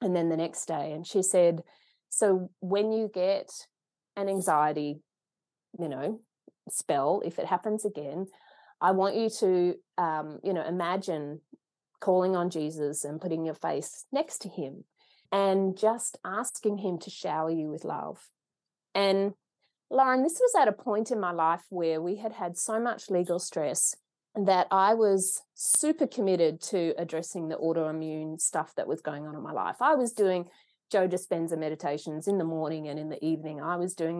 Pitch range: 165-210 Hz